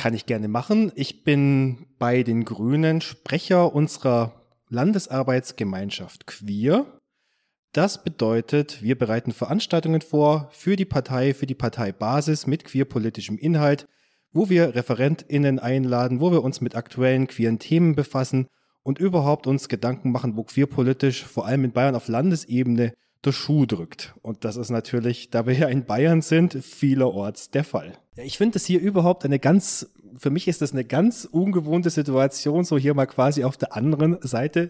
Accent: German